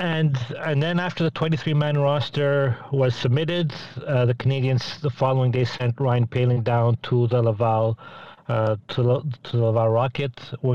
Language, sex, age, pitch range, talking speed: English, male, 40-59, 125-150 Hz, 160 wpm